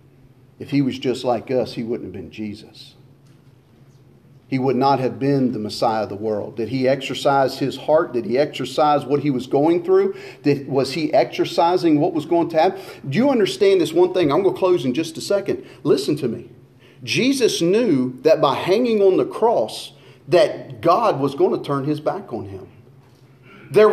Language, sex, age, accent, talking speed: English, male, 40-59, American, 195 wpm